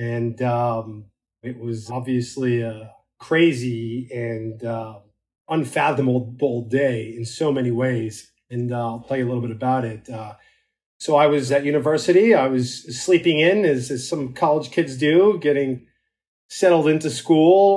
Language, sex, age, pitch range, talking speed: English, male, 30-49, 120-145 Hz, 150 wpm